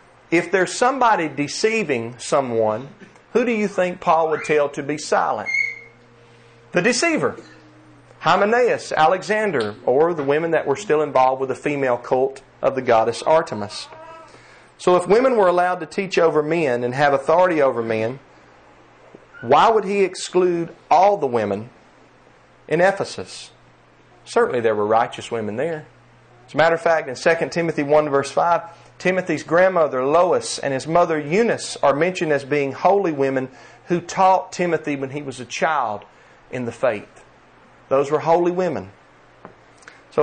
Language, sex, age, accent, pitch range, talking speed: English, male, 40-59, American, 120-170 Hz, 155 wpm